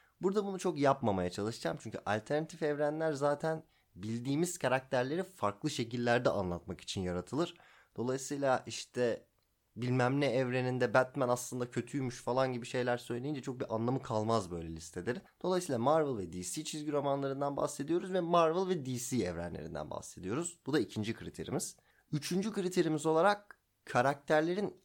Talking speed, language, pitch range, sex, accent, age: 135 wpm, Turkish, 100-150 Hz, male, native, 30-49